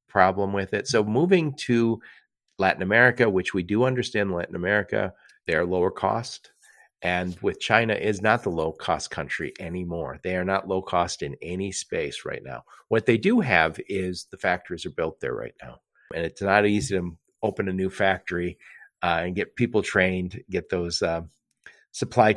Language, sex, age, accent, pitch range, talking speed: English, male, 40-59, American, 90-125 Hz, 180 wpm